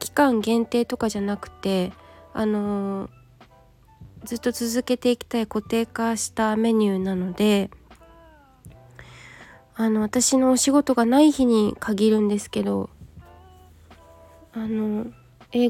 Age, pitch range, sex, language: 20-39, 195-250 Hz, female, Japanese